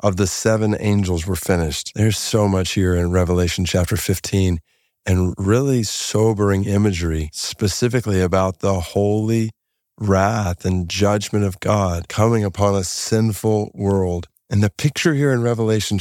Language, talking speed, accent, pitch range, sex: English, 140 wpm, American, 95-120 Hz, male